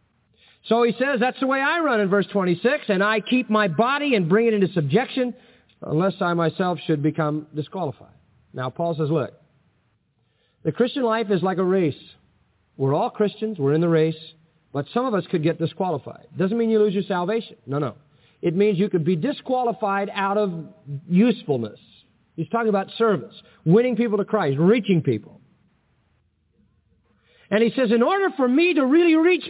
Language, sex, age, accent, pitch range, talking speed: English, male, 50-69, American, 160-250 Hz, 180 wpm